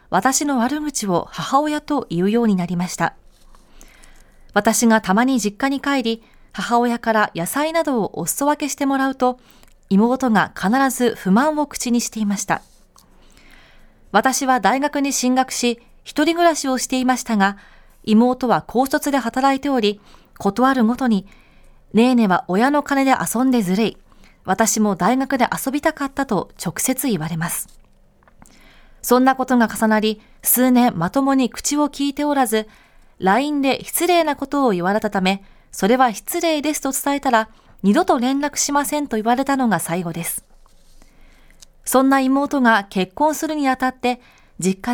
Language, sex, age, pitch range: Japanese, female, 20-39, 210-275 Hz